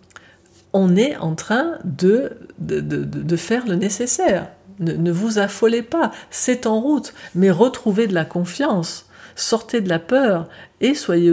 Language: French